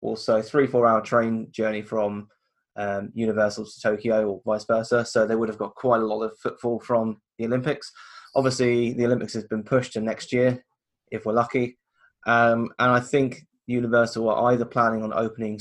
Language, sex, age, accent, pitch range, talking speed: English, male, 20-39, British, 110-125 Hz, 190 wpm